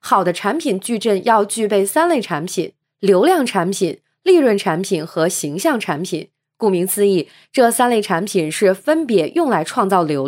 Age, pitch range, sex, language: 20-39, 180-265 Hz, female, Chinese